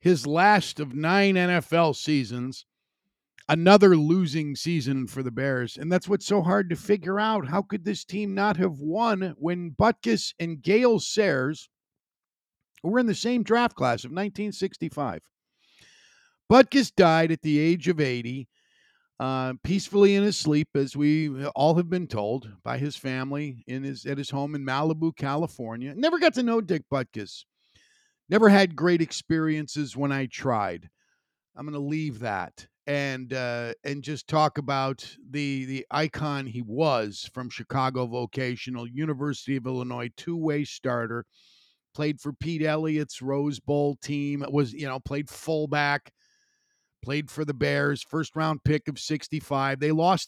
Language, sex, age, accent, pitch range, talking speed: English, male, 50-69, American, 135-175 Hz, 155 wpm